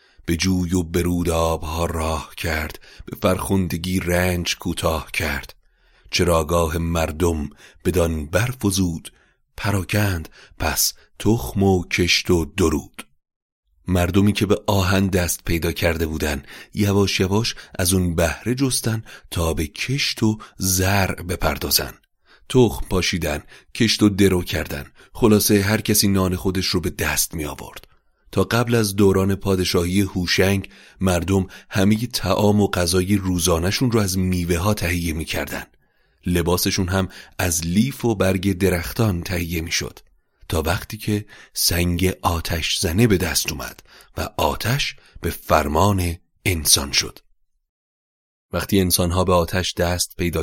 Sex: male